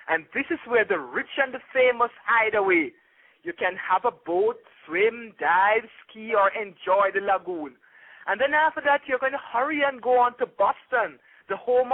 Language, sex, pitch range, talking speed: English, male, 205-285 Hz, 190 wpm